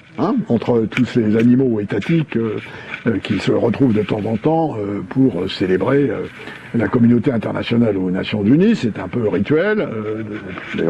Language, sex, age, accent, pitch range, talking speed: French, male, 60-79, French, 120-170 Hz, 170 wpm